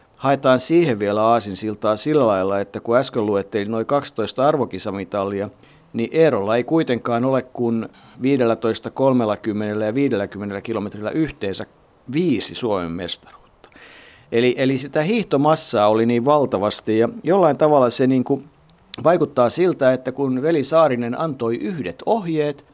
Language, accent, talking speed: Finnish, native, 130 wpm